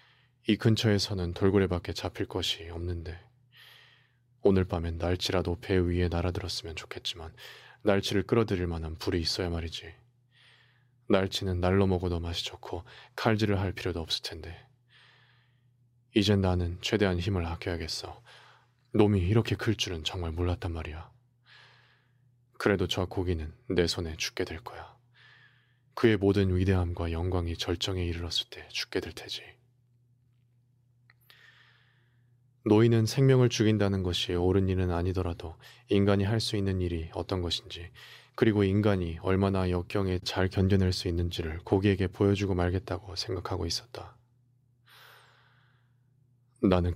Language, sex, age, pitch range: Korean, male, 20-39, 90-120 Hz